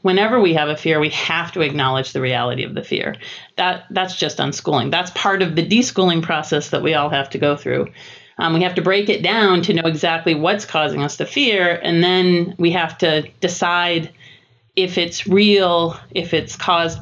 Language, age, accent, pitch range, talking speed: English, 40-59, American, 160-190 Hz, 205 wpm